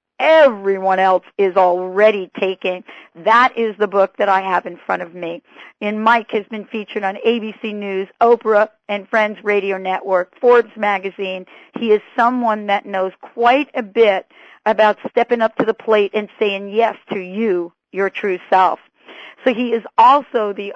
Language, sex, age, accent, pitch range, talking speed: English, female, 50-69, American, 190-230 Hz, 170 wpm